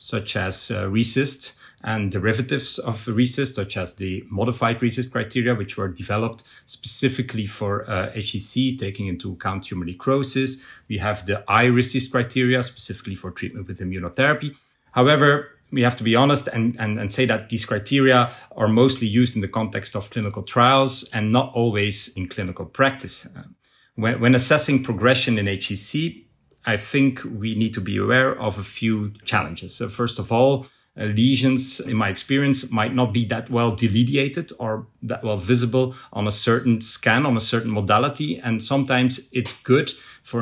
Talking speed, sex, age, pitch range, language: 170 wpm, male, 40-59, 105-125 Hz, English